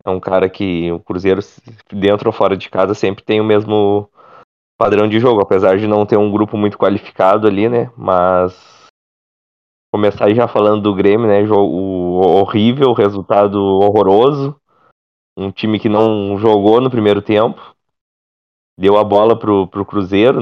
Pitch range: 100-120 Hz